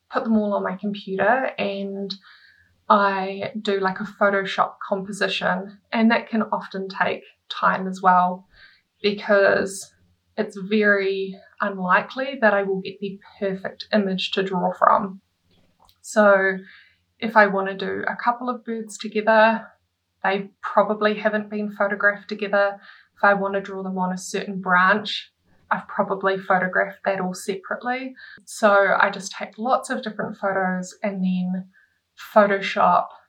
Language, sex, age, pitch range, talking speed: English, female, 20-39, 190-210 Hz, 140 wpm